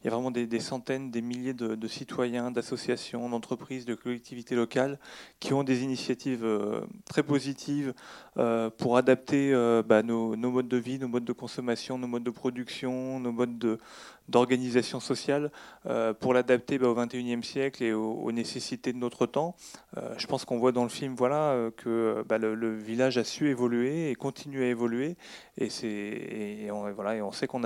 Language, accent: French, French